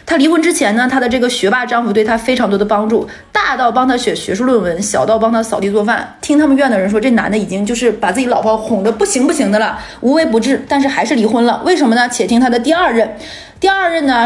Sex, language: female, Chinese